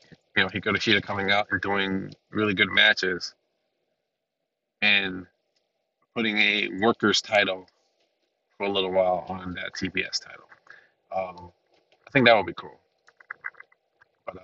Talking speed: 135 wpm